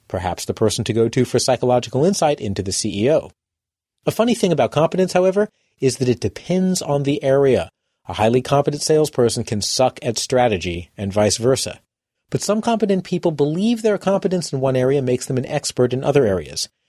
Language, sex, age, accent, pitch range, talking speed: English, male, 40-59, American, 115-165 Hz, 190 wpm